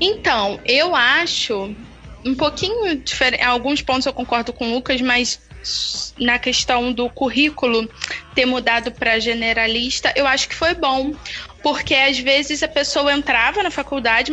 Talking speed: 150 wpm